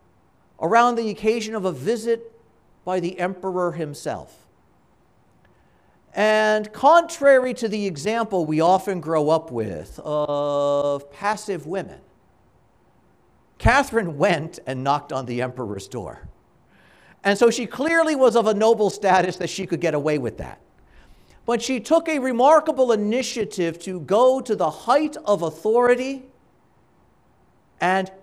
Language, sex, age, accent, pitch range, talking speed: English, male, 50-69, American, 180-255 Hz, 130 wpm